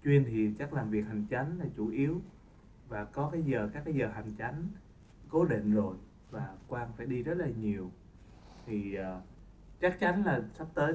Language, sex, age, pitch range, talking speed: Vietnamese, male, 20-39, 105-145 Hz, 195 wpm